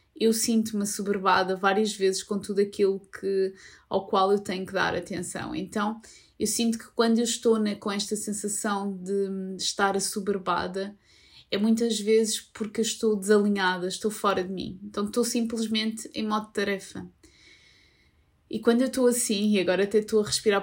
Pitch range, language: 195-220 Hz, Portuguese